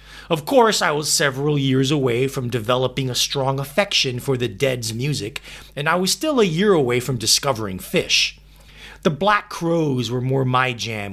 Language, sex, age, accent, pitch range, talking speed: English, male, 30-49, American, 130-180 Hz, 180 wpm